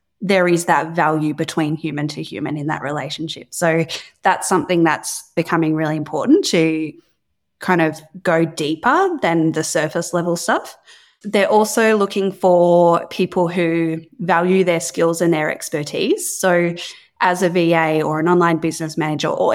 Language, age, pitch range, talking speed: English, 20-39, 160-190 Hz, 155 wpm